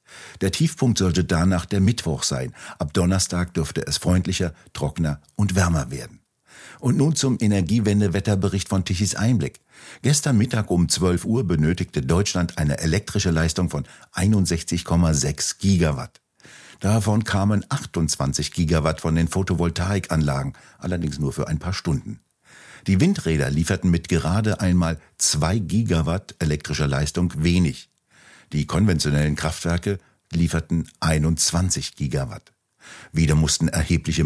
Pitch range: 80-100 Hz